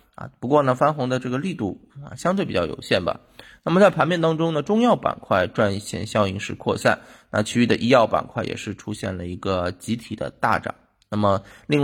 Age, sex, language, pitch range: 20-39, male, Chinese, 105-145 Hz